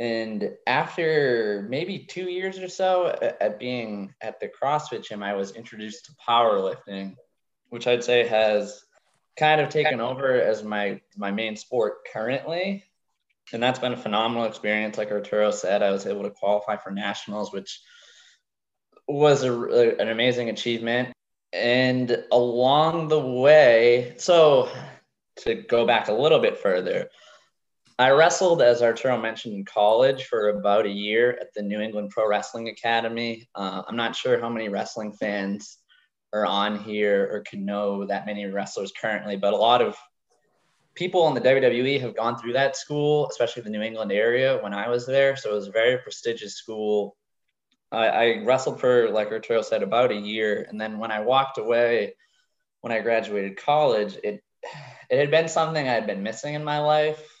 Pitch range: 105-150 Hz